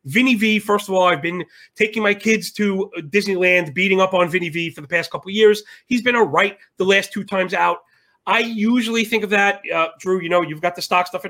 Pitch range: 175-215 Hz